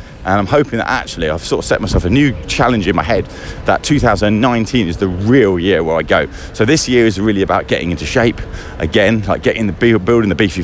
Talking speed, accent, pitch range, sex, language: 230 wpm, British, 90-120 Hz, male, English